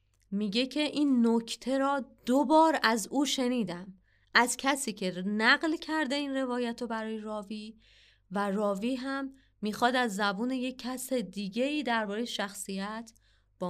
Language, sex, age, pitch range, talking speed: Persian, female, 30-49, 190-250 Hz, 135 wpm